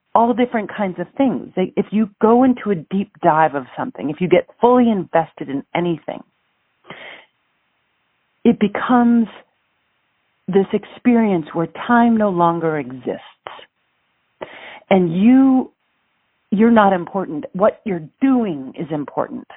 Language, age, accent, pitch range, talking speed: English, 40-59, American, 175-230 Hz, 125 wpm